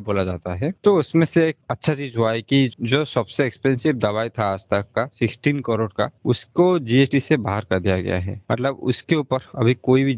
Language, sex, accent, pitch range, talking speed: Hindi, male, native, 110-140 Hz, 210 wpm